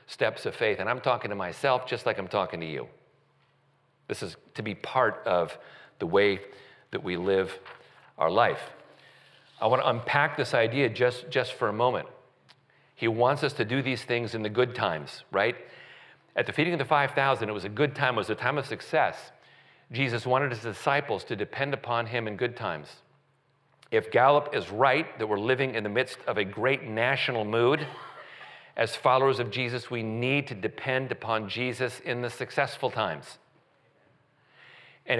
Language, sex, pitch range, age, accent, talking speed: English, male, 110-140 Hz, 40-59, American, 185 wpm